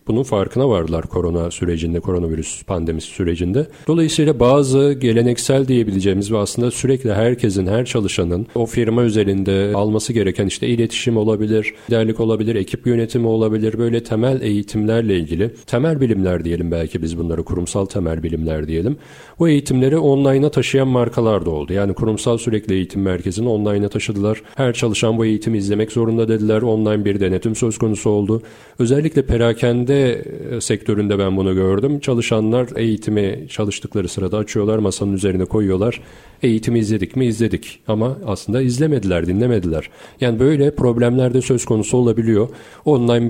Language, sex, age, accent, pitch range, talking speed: Turkish, male, 40-59, native, 100-120 Hz, 140 wpm